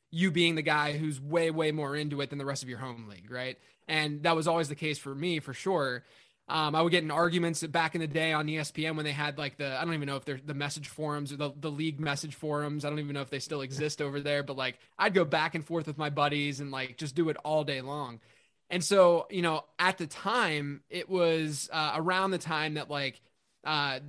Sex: male